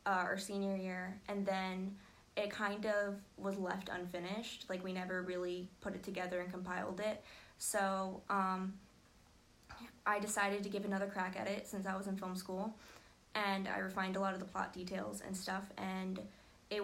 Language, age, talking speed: English, 20-39, 180 wpm